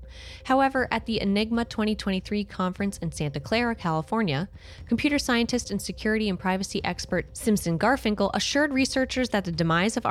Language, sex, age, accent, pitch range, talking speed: English, female, 20-39, American, 155-215 Hz, 150 wpm